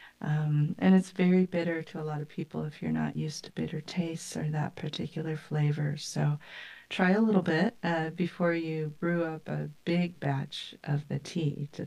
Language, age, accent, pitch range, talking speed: English, 40-59, American, 145-180 Hz, 190 wpm